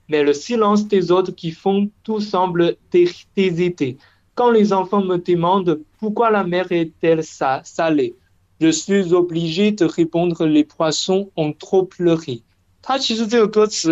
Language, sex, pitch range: Chinese, male, 135-185 Hz